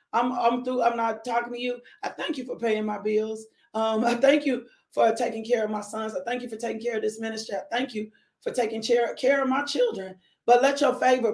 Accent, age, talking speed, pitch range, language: American, 40-59, 255 wpm, 245-300 Hz, English